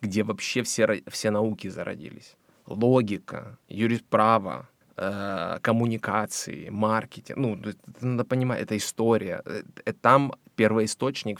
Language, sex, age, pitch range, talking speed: Ukrainian, male, 20-39, 100-120 Hz, 90 wpm